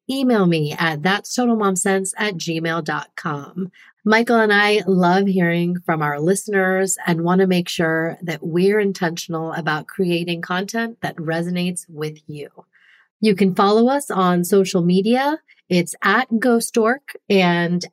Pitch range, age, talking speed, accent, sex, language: 170-210 Hz, 30-49, 135 wpm, American, female, English